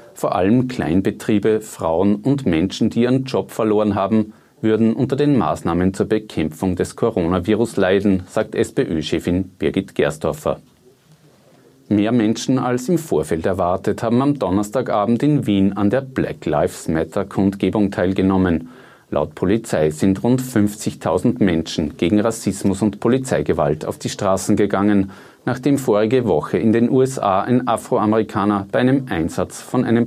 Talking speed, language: 140 wpm, German